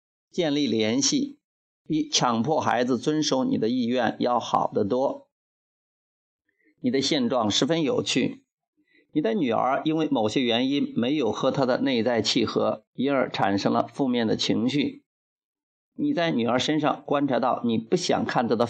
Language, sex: Chinese, male